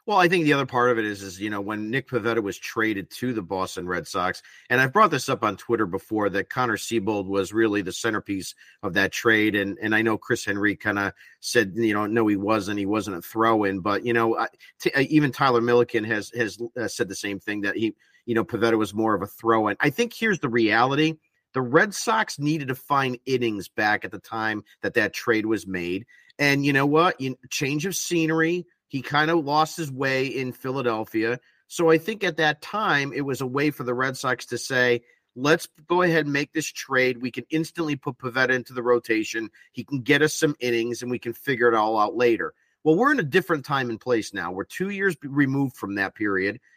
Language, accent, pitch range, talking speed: English, American, 115-155 Hz, 230 wpm